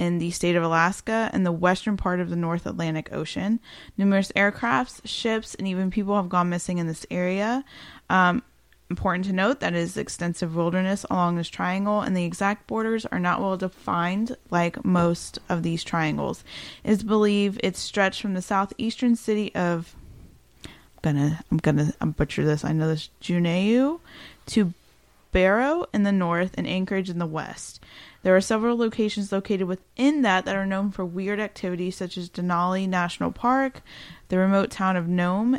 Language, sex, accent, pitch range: English, female, American, 175-210 Hz